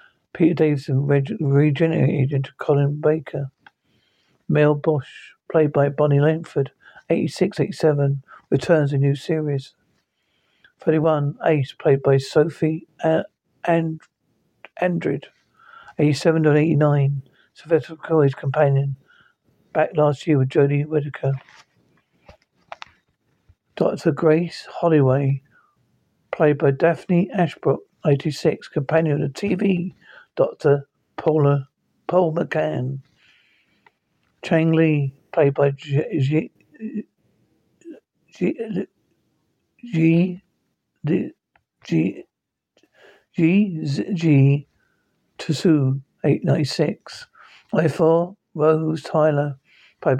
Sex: male